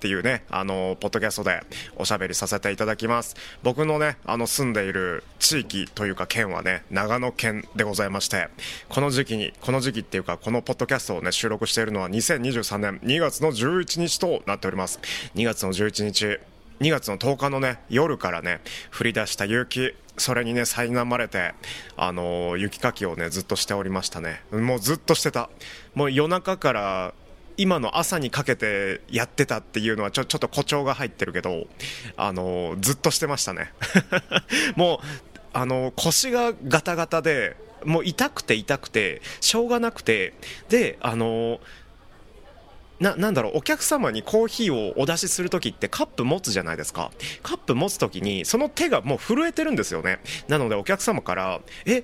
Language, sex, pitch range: Japanese, male, 100-155 Hz